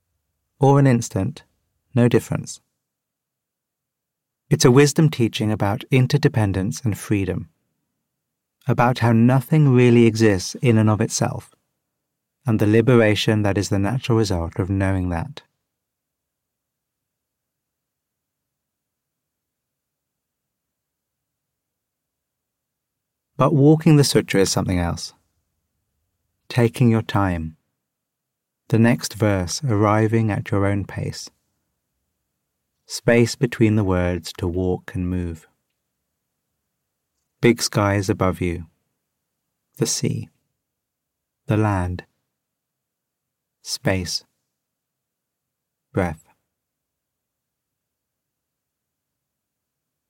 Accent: British